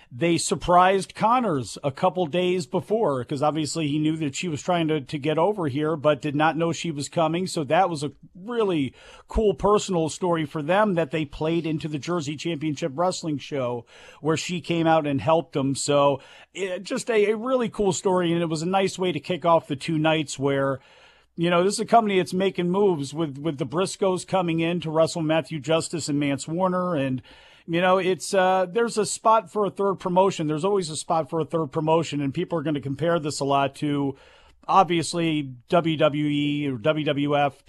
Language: English